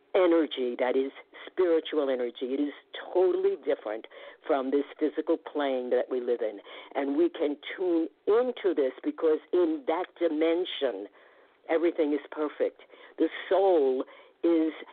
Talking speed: 135 wpm